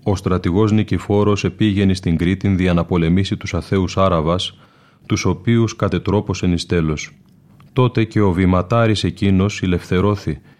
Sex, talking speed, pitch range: male, 130 wpm, 90-105 Hz